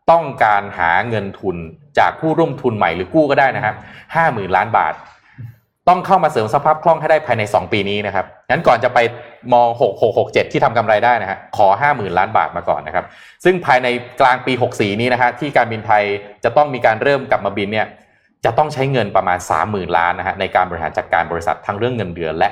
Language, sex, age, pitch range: Thai, male, 20-39, 105-150 Hz